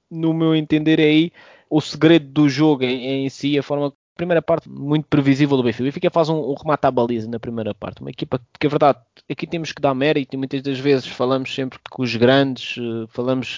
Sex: male